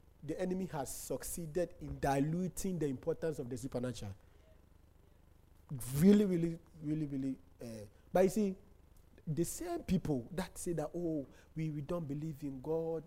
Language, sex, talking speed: English, male, 145 wpm